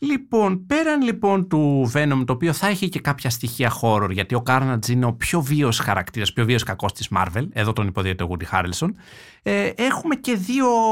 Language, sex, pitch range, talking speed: Greek, male, 110-185 Hz, 200 wpm